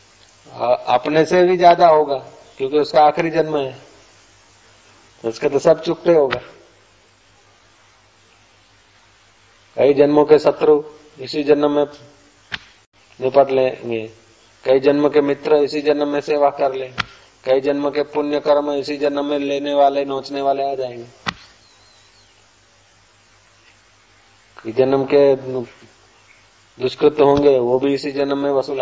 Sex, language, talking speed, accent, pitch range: male, Hindi, 125 wpm, native, 105-145 Hz